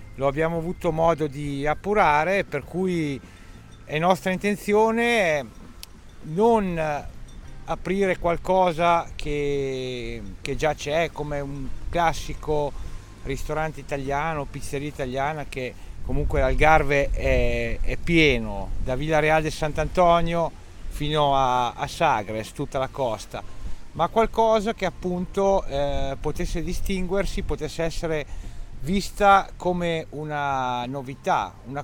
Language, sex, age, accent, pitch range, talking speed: Italian, male, 40-59, native, 130-175 Hz, 105 wpm